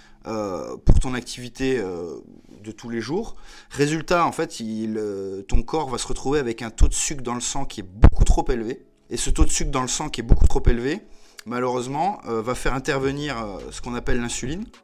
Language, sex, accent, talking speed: French, male, French, 200 wpm